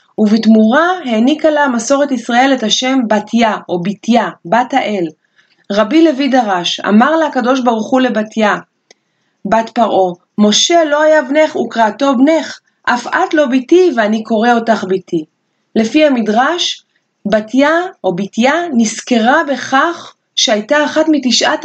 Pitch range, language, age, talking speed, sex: 200-270 Hz, Hebrew, 30-49, 130 wpm, female